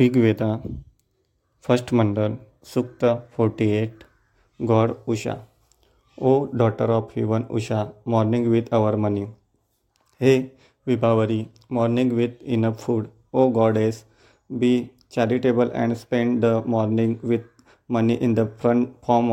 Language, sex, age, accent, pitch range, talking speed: English, male, 30-49, Indian, 115-125 Hz, 120 wpm